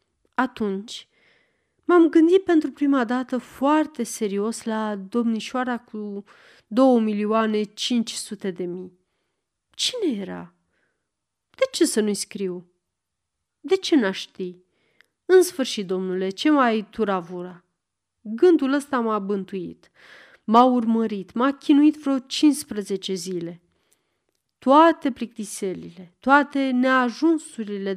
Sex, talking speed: female, 105 wpm